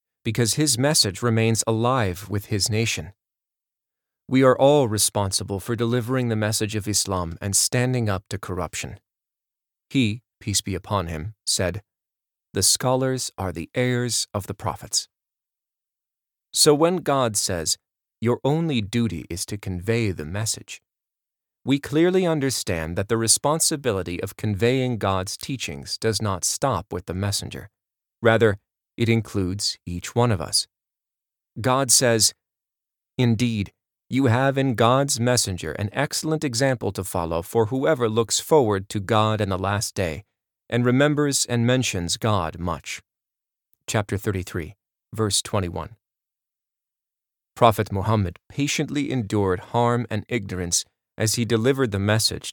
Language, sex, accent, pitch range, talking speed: English, male, American, 100-125 Hz, 135 wpm